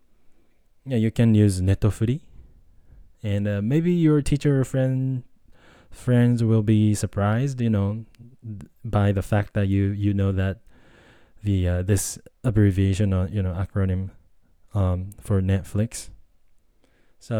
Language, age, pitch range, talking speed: English, 20-39, 95-115 Hz, 135 wpm